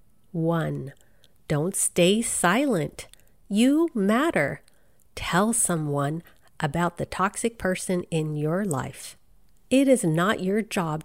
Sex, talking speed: female, 110 wpm